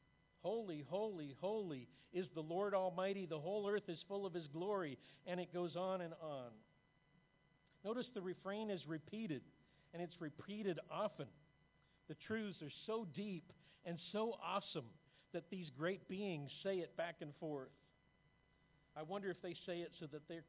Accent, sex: American, male